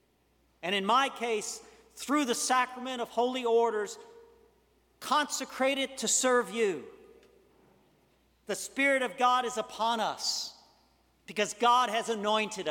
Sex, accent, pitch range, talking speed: male, American, 185-240 Hz, 120 wpm